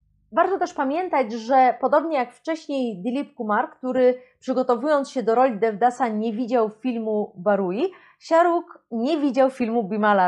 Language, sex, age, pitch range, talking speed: Polish, female, 30-49, 220-285 Hz, 140 wpm